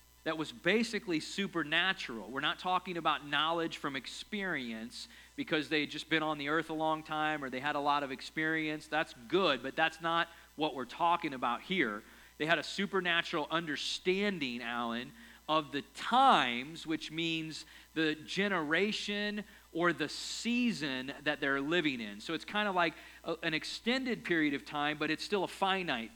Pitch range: 150-185 Hz